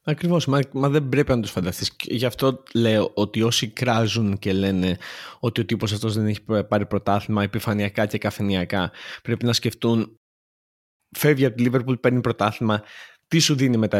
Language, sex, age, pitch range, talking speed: Greek, male, 20-39, 105-135 Hz, 165 wpm